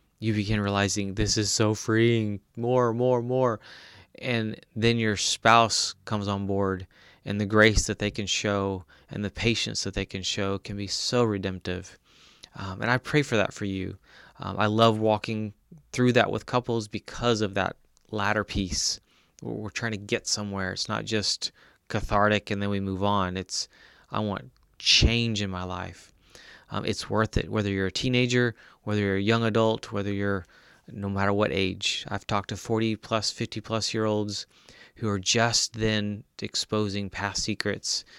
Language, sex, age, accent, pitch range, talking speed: English, male, 20-39, American, 100-115 Hz, 170 wpm